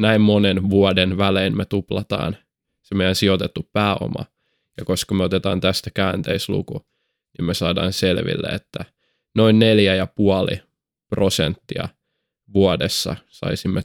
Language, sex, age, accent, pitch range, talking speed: Finnish, male, 20-39, native, 95-105 Hz, 120 wpm